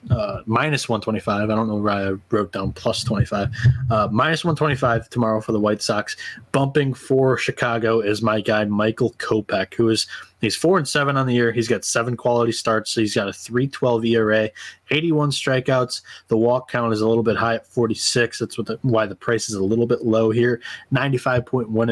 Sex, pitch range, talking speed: male, 110-125 Hz, 200 wpm